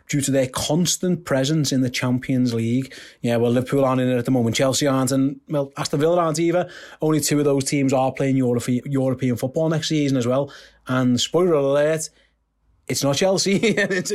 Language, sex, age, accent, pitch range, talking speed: English, male, 30-49, British, 130-160 Hz, 195 wpm